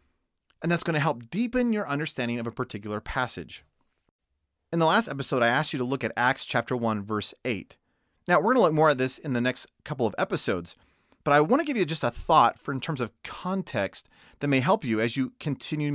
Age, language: 30-49, English